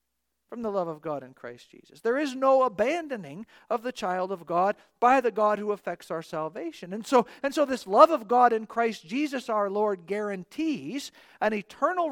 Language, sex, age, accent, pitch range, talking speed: English, male, 40-59, American, 185-250 Hz, 195 wpm